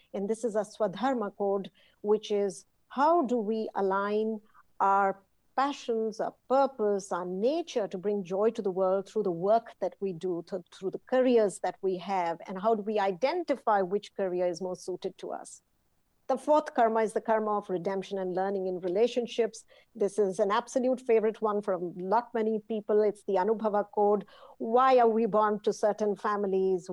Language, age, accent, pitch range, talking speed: English, 50-69, Indian, 205-260 Hz, 180 wpm